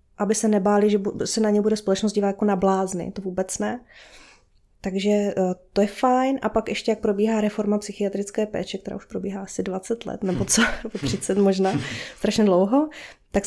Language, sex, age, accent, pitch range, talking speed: Czech, female, 20-39, native, 190-215 Hz, 185 wpm